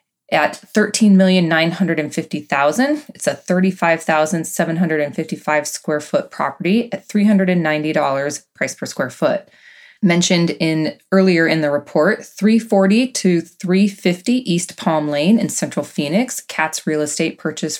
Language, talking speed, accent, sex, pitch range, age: English, 110 wpm, American, female, 155-200 Hz, 20-39